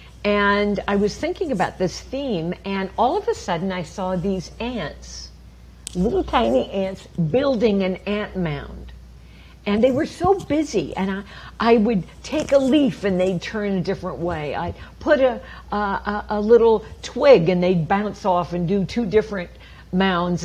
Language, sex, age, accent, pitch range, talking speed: English, female, 50-69, American, 175-250 Hz, 165 wpm